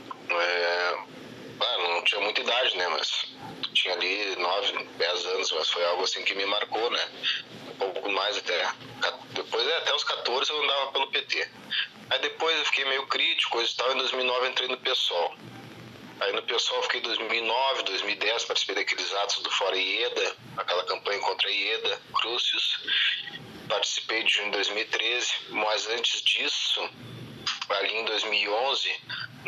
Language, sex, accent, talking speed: Portuguese, male, Brazilian, 155 wpm